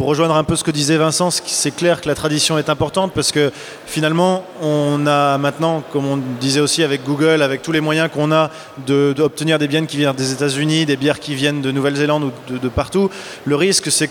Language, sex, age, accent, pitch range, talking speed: French, male, 20-39, French, 140-160 Hz, 240 wpm